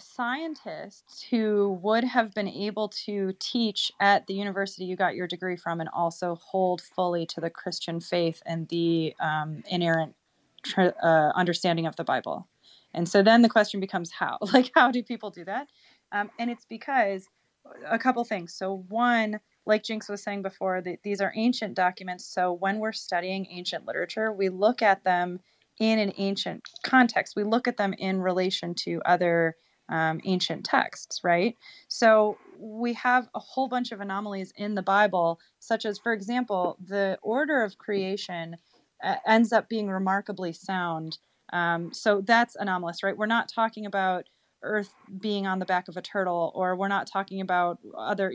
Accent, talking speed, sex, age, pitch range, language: American, 175 wpm, female, 30-49, 180-215 Hz, English